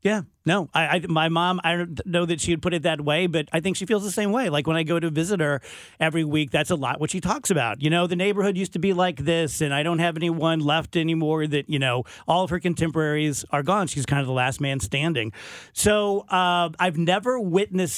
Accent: American